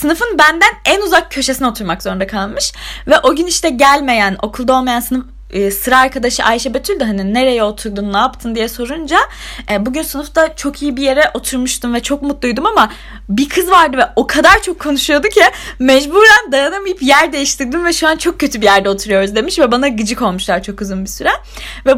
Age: 20-39